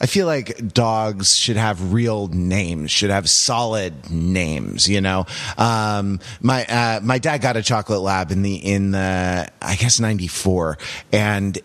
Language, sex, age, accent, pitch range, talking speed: English, male, 30-49, American, 95-120 Hz, 160 wpm